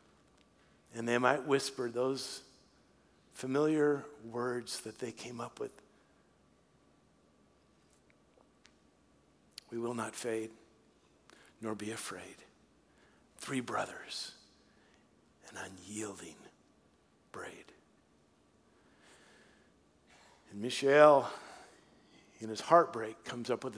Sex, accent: male, American